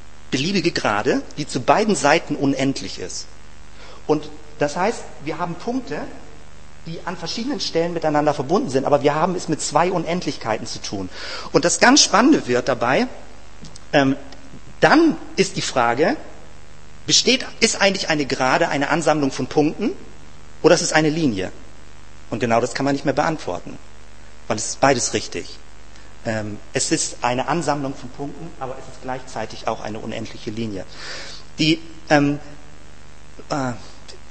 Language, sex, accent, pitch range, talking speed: German, male, German, 110-165 Hz, 145 wpm